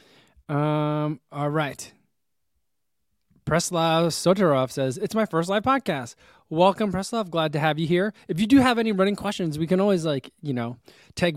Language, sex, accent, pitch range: English, male, American, 125-165 Hz